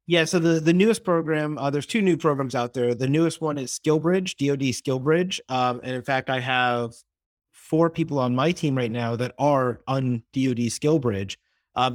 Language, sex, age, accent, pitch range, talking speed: English, male, 30-49, American, 120-140 Hz, 195 wpm